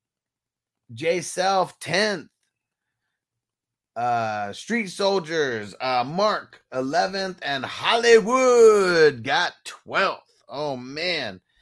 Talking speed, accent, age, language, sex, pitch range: 75 wpm, American, 30-49, English, male, 120-165 Hz